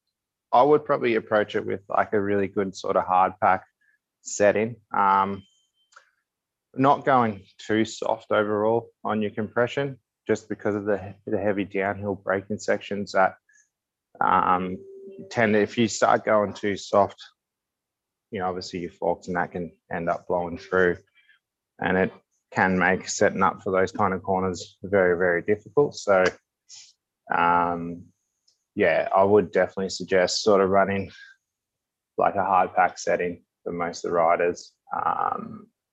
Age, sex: 20-39, male